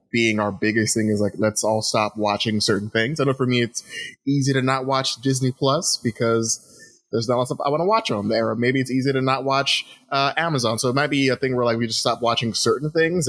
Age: 20-39